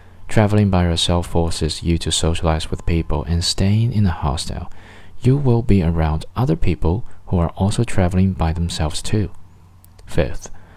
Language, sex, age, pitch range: Chinese, male, 20-39, 85-100 Hz